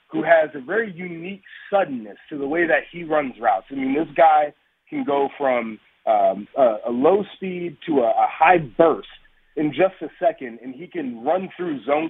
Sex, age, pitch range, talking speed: male, 30-49, 135-190 Hz, 200 wpm